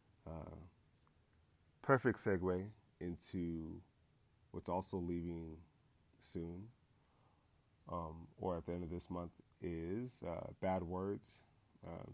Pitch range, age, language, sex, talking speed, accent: 80-100 Hz, 30-49, English, male, 105 wpm, American